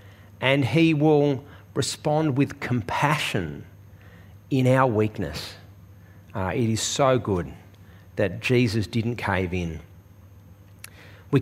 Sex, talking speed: male, 105 wpm